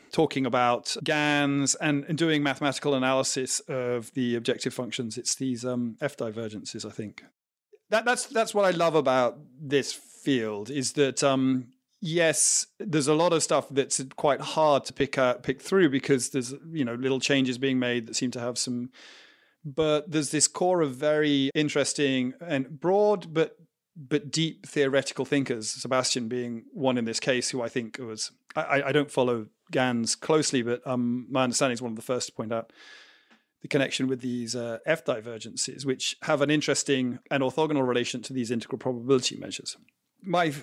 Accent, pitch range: British, 125-155 Hz